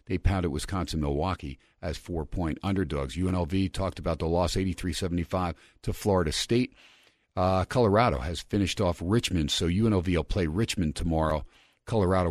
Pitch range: 80-100 Hz